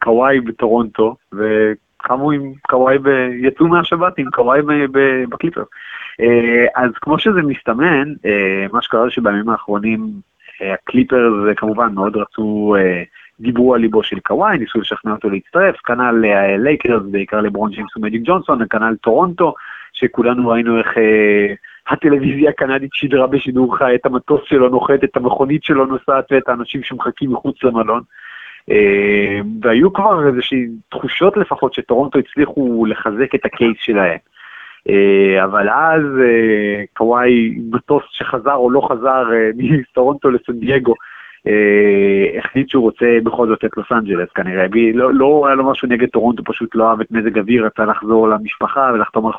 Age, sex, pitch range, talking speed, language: 20-39, male, 110-135 Hz, 110 wpm, English